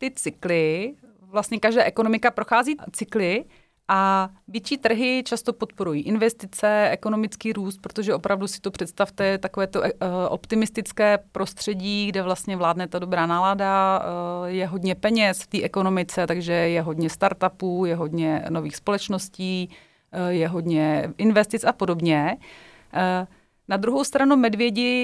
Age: 30-49